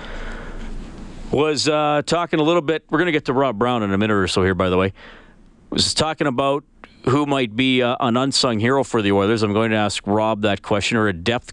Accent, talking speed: American, 235 wpm